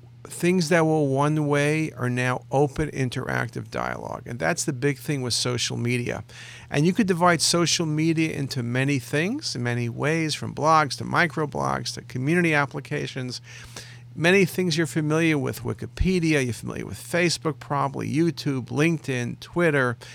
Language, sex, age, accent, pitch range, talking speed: English, male, 50-69, American, 120-160 Hz, 150 wpm